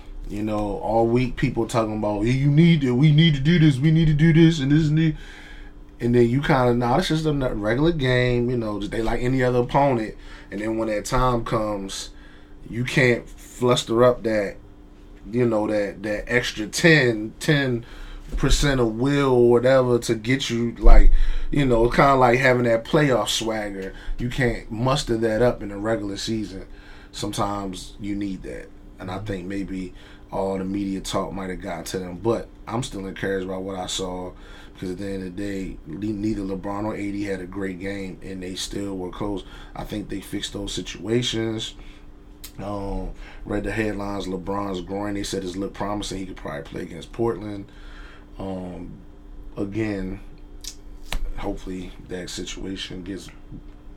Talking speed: 180 wpm